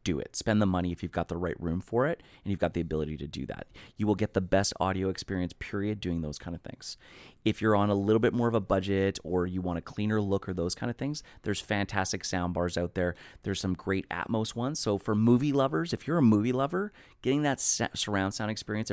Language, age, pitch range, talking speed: English, 30-49, 95-115 Hz, 250 wpm